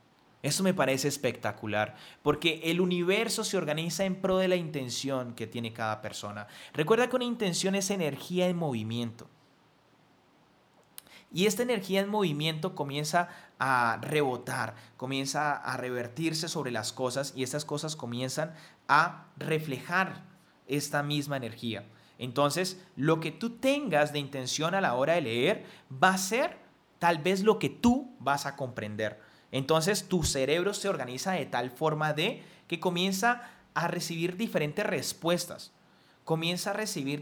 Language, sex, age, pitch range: Spanish, male, 30-49, 135-190 Hz